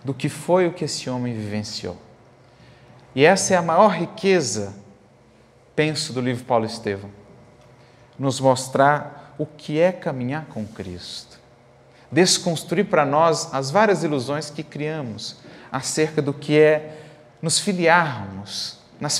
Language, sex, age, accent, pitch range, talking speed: Portuguese, male, 40-59, Brazilian, 115-150 Hz, 130 wpm